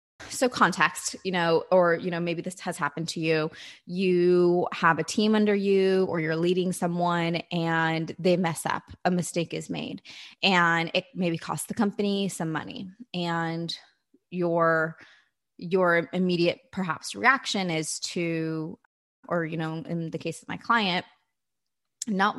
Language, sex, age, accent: English, female, 20-39, American